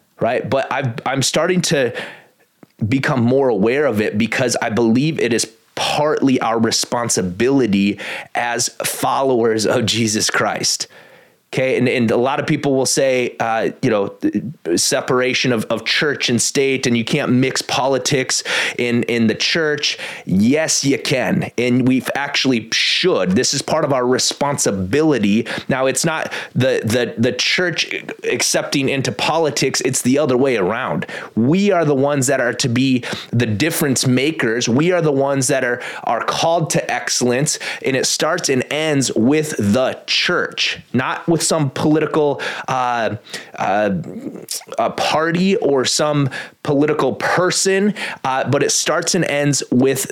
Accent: American